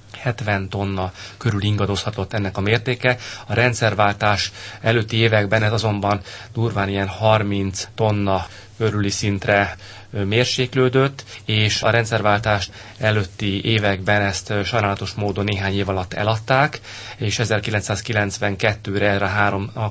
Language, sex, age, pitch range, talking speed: Hungarian, male, 30-49, 100-110 Hz, 115 wpm